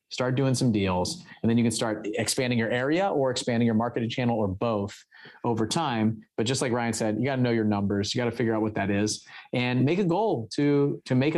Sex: male